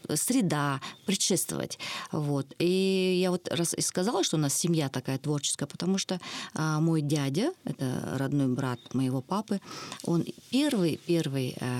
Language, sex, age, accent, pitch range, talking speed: Russian, female, 40-59, native, 135-175 Hz, 130 wpm